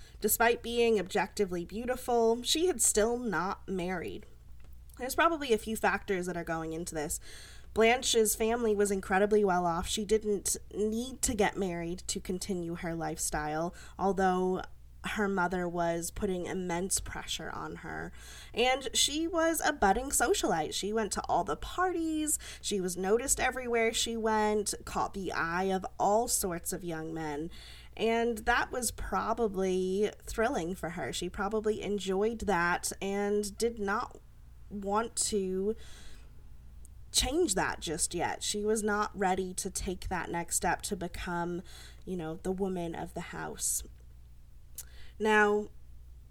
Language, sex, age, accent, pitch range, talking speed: English, female, 20-39, American, 175-220 Hz, 145 wpm